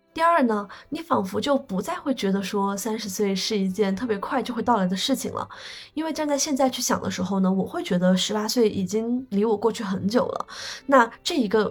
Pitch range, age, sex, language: 200-250 Hz, 20-39, female, Chinese